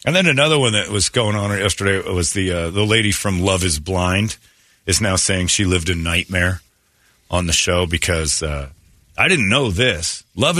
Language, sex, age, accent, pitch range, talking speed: English, male, 40-59, American, 85-105 Hz, 200 wpm